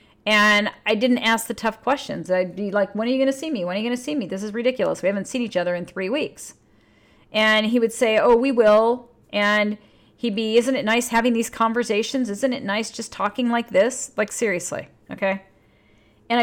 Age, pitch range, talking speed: 40-59, 185-235 Hz, 225 wpm